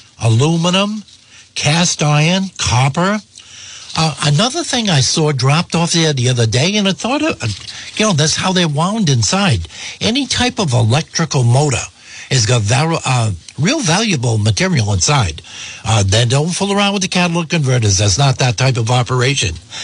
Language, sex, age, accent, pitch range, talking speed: English, male, 60-79, American, 115-170 Hz, 160 wpm